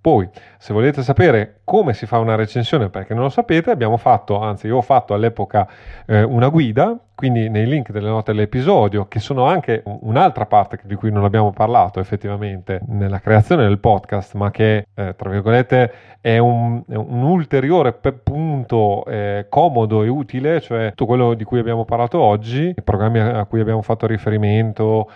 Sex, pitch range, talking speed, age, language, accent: male, 105-140 Hz, 175 wpm, 30-49, Italian, native